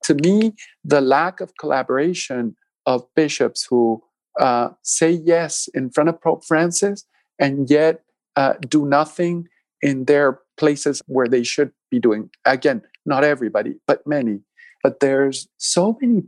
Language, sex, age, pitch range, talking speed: English, male, 50-69, 130-170 Hz, 145 wpm